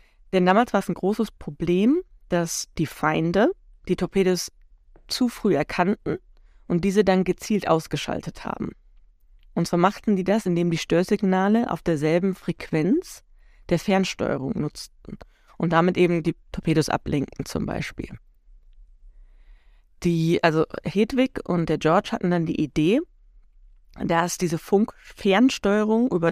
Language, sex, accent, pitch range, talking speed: German, female, German, 165-210 Hz, 130 wpm